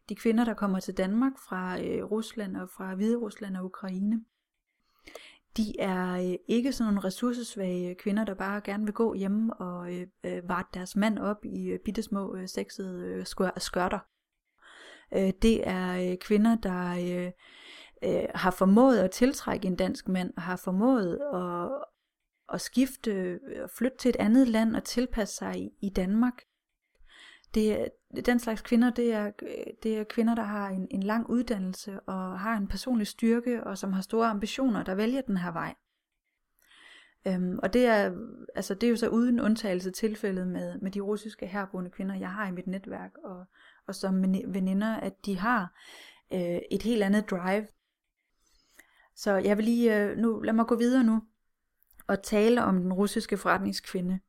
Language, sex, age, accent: Danish, female, 30-49, native